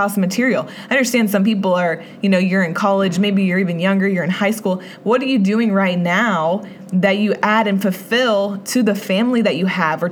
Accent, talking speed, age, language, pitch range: American, 220 wpm, 20-39, English, 190-225 Hz